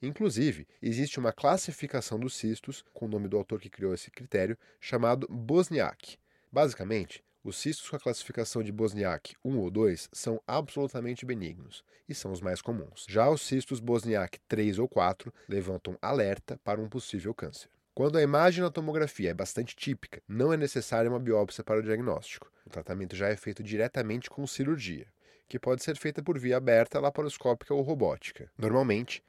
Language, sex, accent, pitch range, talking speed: Portuguese, male, Brazilian, 110-140 Hz, 170 wpm